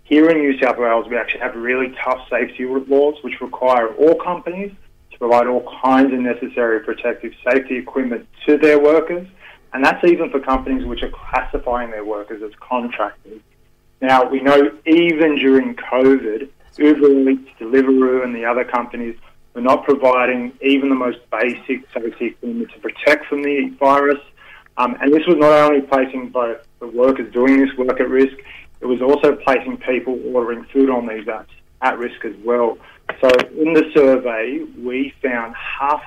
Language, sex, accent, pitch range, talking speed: English, male, Australian, 120-145 Hz, 170 wpm